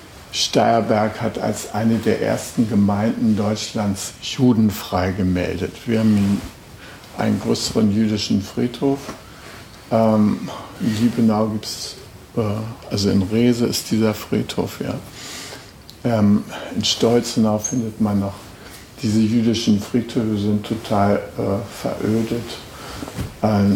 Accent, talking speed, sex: German, 110 wpm, male